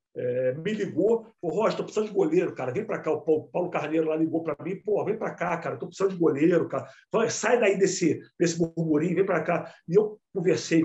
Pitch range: 170-235 Hz